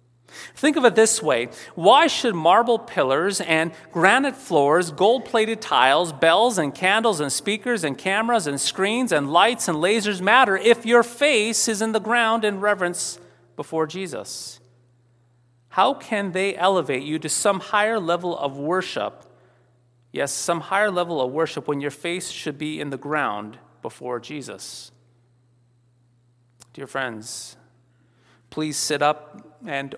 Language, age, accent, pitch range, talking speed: English, 30-49, American, 135-210 Hz, 145 wpm